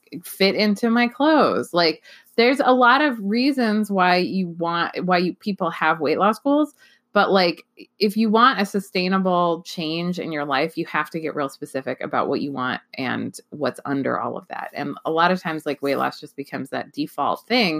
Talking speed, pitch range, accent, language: 200 wpm, 155-225 Hz, American, English